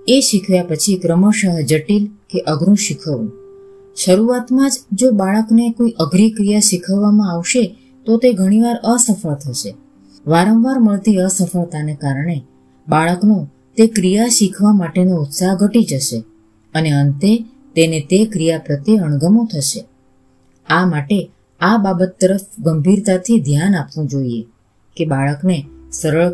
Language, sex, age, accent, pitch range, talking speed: Gujarati, female, 20-39, native, 150-210 Hz, 75 wpm